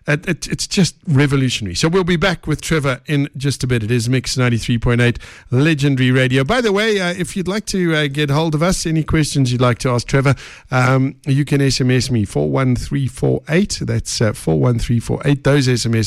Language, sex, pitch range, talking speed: English, male, 120-155 Hz, 185 wpm